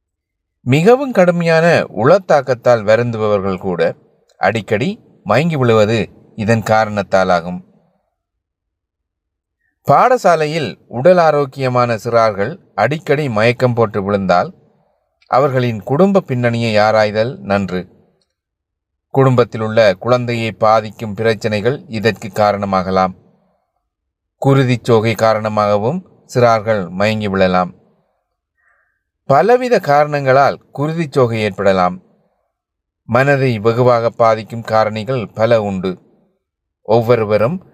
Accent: native